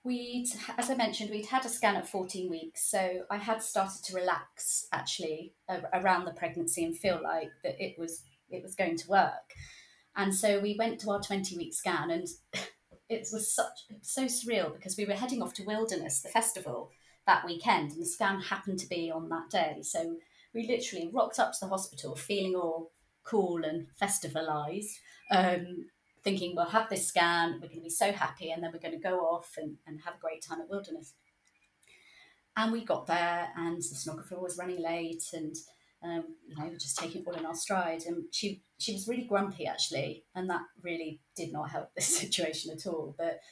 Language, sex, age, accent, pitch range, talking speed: English, female, 30-49, British, 165-210 Hz, 200 wpm